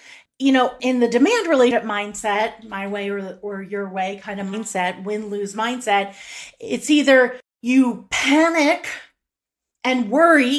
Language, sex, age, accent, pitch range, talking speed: English, female, 30-49, American, 220-285 Hz, 130 wpm